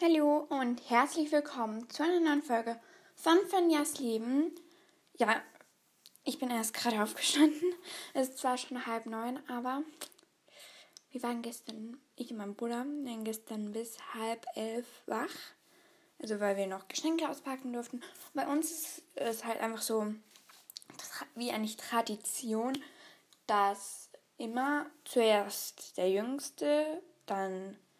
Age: 10-29